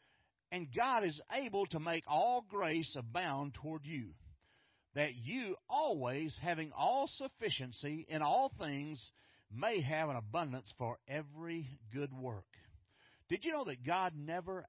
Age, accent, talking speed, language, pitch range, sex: 50-69, American, 140 wpm, English, 120-180 Hz, male